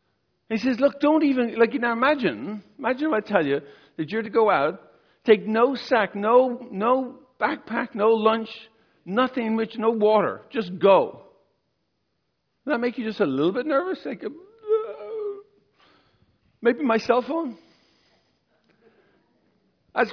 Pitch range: 170-245 Hz